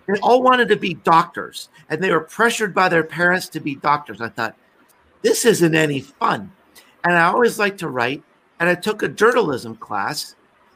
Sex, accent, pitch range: male, American, 150-180 Hz